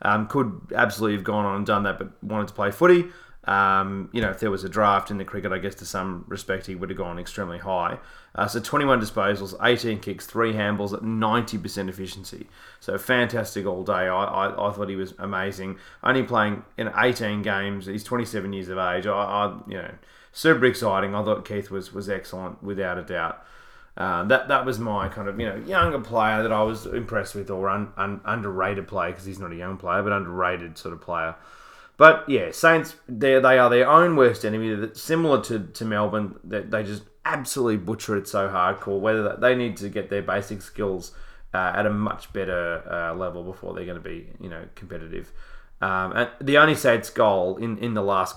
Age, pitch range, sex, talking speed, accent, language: 30-49, 95-110 Hz, male, 215 wpm, Australian, English